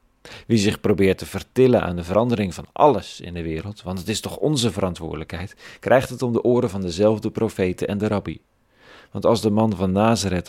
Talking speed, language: 205 wpm, Dutch